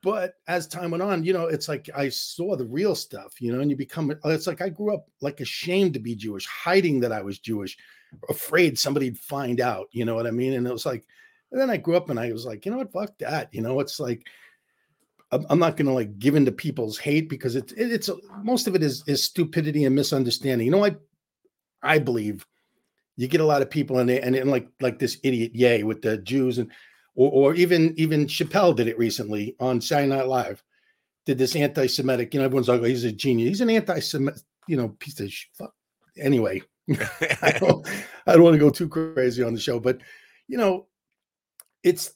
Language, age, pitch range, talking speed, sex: English, 40-59, 125-170 Hz, 220 wpm, male